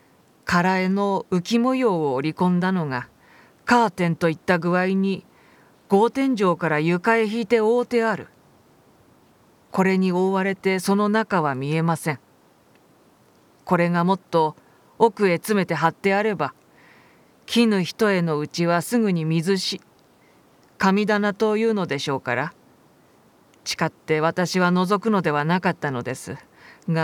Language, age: Japanese, 40-59